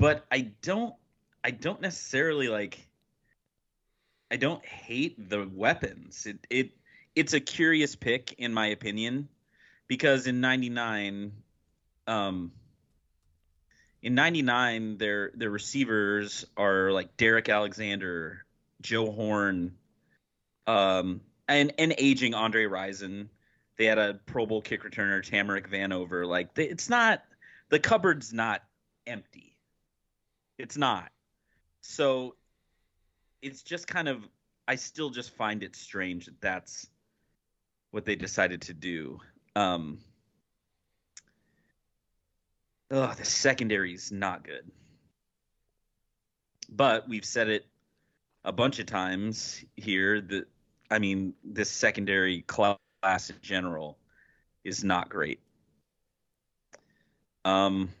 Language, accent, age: English, American, 30-49